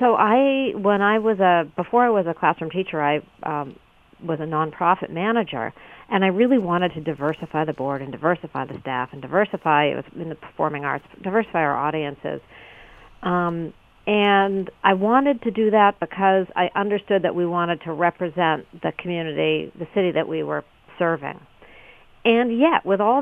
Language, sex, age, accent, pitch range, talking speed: English, female, 50-69, American, 160-205 Hz, 175 wpm